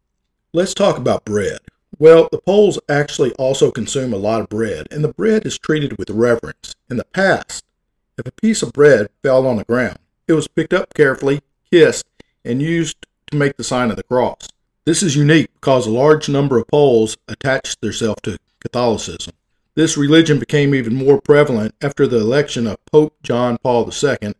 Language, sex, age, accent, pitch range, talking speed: English, male, 50-69, American, 115-155 Hz, 185 wpm